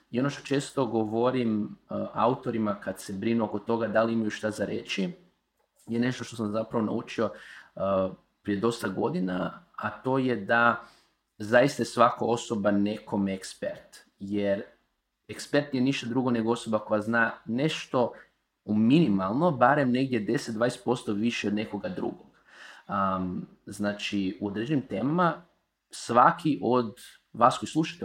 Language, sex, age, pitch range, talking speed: Croatian, male, 30-49, 105-140 Hz, 145 wpm